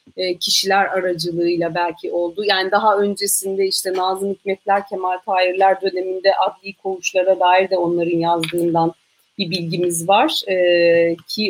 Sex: female